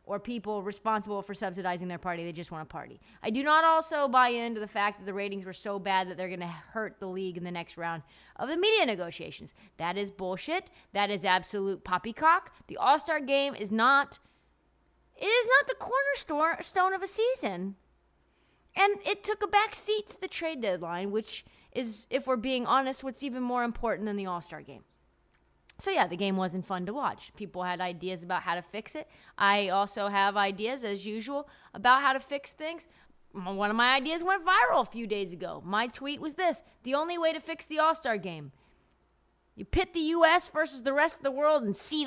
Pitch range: 190-300 Hz